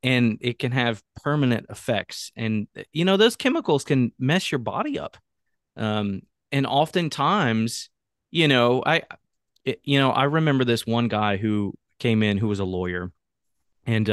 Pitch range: 105-130 Hz